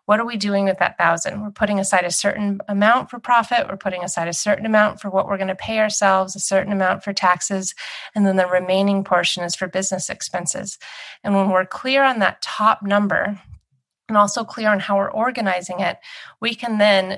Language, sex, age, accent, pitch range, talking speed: English, female, 30-49, American, 185-210 Hz, 215 wpm